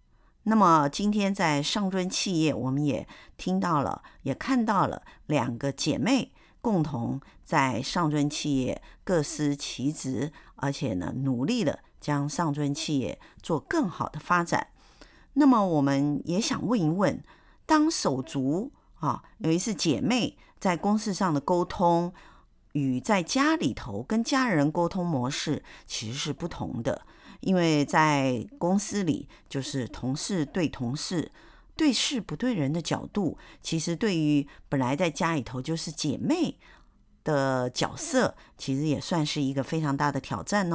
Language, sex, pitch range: Chinese, female, 145-205 Hz